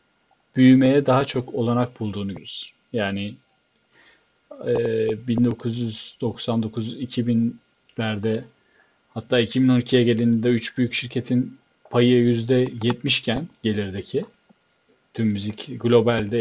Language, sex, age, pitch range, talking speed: Turkish, male, 40-59, 110-130 Hz, 75 wpm